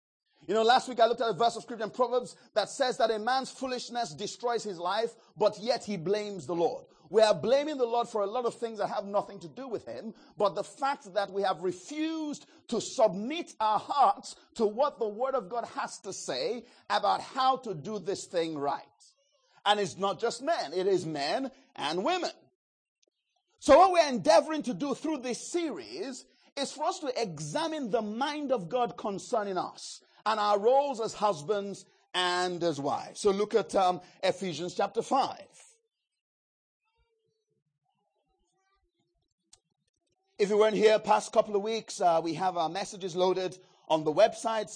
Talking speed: 180 wpm